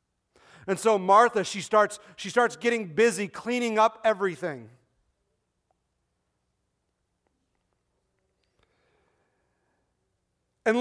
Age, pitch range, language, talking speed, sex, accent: 40-59, 150-220 Hz, English, 70 wpm, male, American